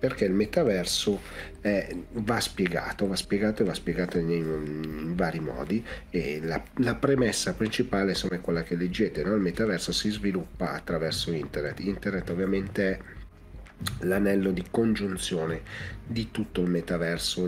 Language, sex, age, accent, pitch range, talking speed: Italian, male, 40-59, native, 85-105 Hz, 145 wpm